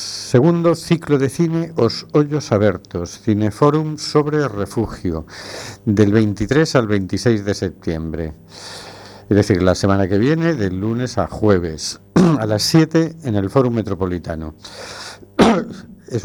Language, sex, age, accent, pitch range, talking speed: Spanish, male, 50-69, Spanish, 100-120 Hz, 125 wpm